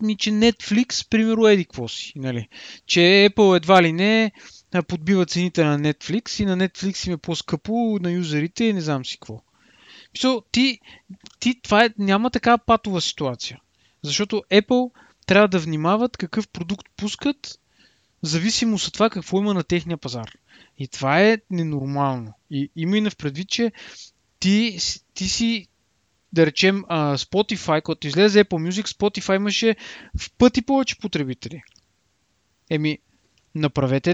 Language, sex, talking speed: Bulgarian, male, 145 wpm